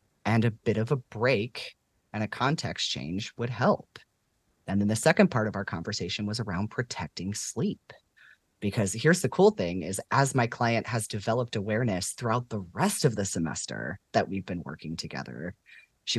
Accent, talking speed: American, 180 wpm